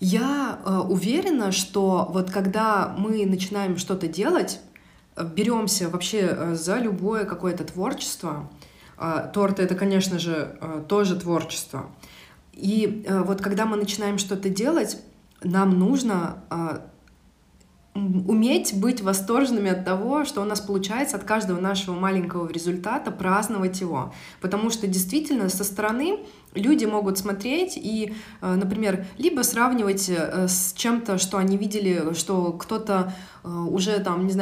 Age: 20-39